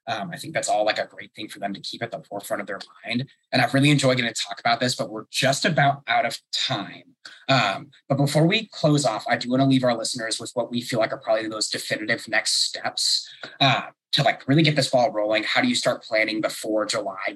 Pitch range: 115-145 Hz